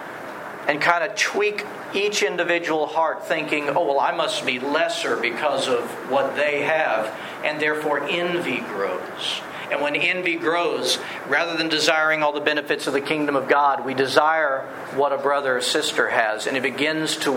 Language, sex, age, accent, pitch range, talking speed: English, male, 50-69, American, 145-175 Hz, 175 wpm